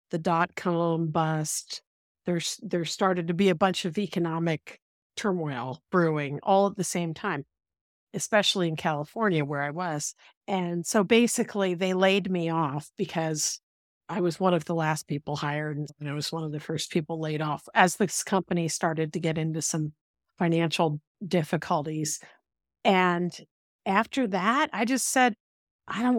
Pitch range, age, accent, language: 160-195 Hz, 50-69, American, English